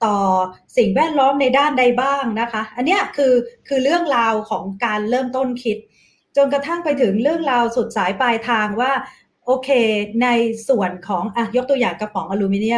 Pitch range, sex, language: 210-260 Hz, female, Thai